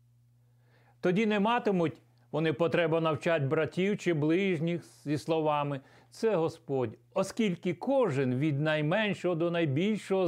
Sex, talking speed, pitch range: male, 110 wpm, 120-165 Hz